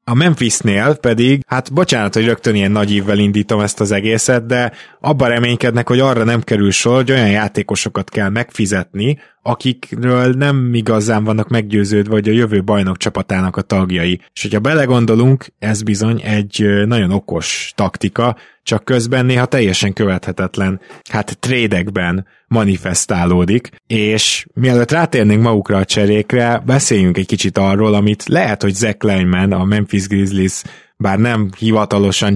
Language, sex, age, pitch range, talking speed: Hungarian, male, 20-39, 100-120 Hz, 145 wpm